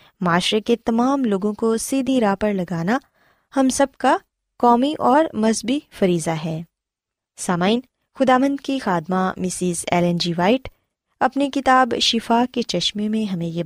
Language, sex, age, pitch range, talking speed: Urdu, female, 20-39, 180-255 Hz, 145 wpm